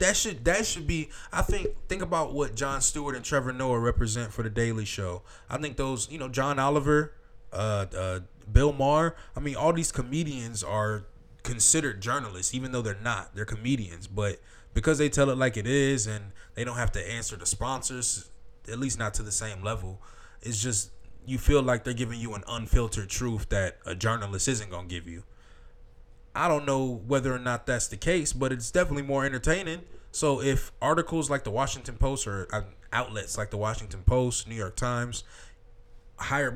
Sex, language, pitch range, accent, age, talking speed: male, English, 105-135 Hz, American, 20-39, 190 wpm